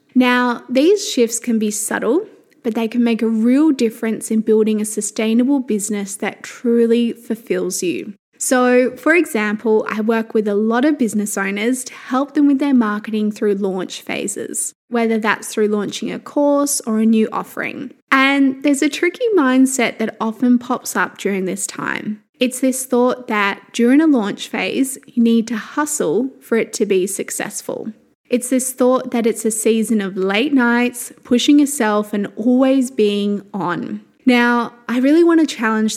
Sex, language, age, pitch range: female, English, 20-39, 215-270 Hz